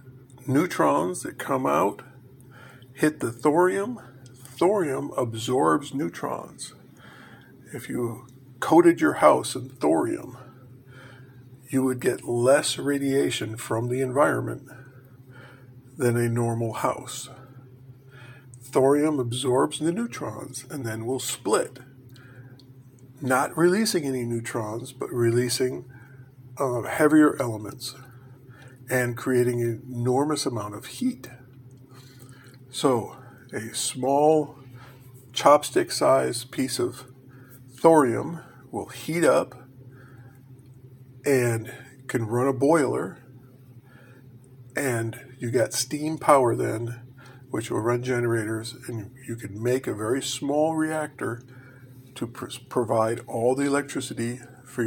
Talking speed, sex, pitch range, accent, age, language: 100 wpm, male, 125-130 Hz, American, 50-69, English